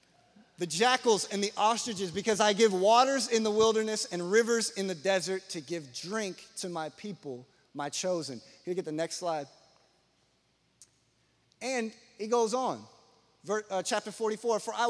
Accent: American